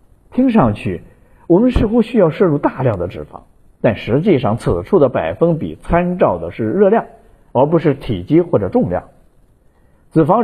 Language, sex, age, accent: Chinese, male, 50-69, native